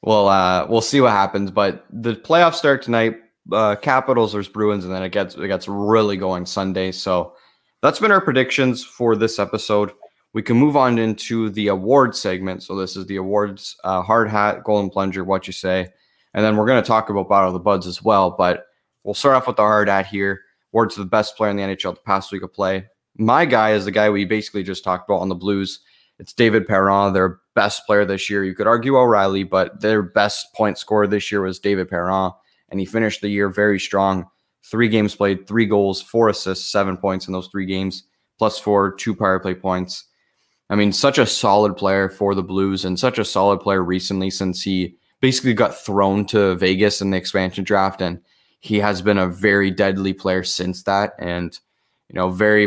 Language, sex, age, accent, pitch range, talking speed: English, male, 20-39, American, 95-110 Hz, 215 wpm